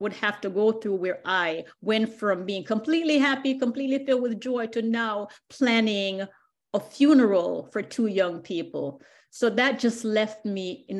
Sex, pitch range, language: female, 180-235 Hz, English